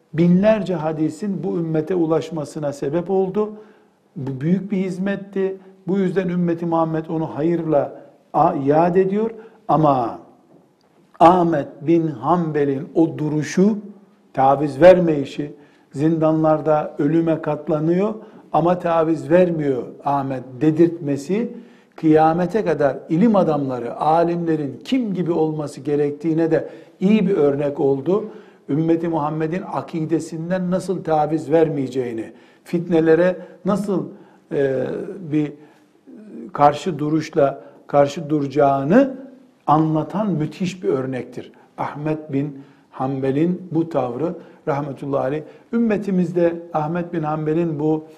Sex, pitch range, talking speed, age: male, 150-185 Hz, 100 wpm, 60-79